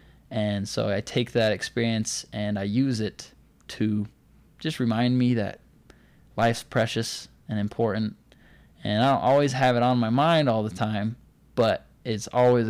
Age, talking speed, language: 20-39, 160 wpm, English